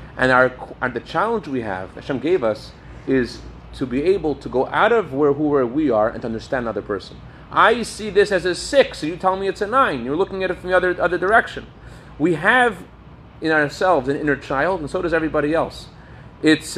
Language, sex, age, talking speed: English, male, 30-49, 225 wpm